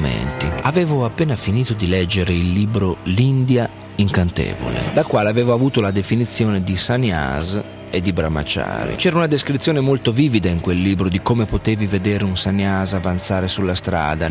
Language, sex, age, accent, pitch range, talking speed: Italian, male, 40-59, native, 95-115 Hz, 155 wpm